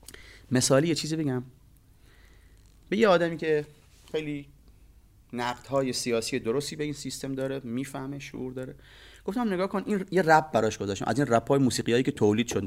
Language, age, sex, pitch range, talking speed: Persian, 30-49, male, 115-155 Hz, 160 wpm